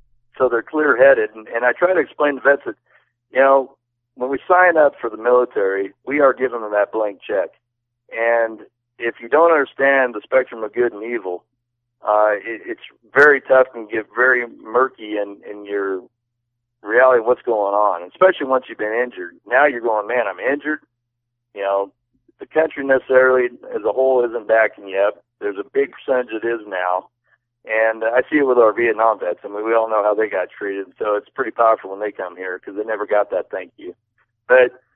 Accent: American